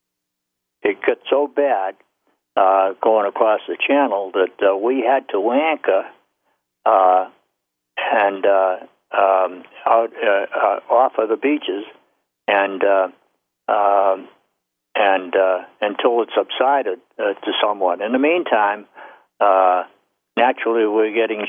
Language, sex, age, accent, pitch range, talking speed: English, male, 60-79, American, 95-110 Hz, 125 wpm